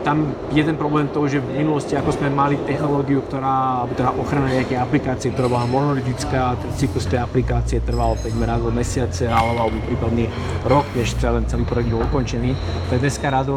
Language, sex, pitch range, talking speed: Slovak, male, 115-135 Hz, 170 wpm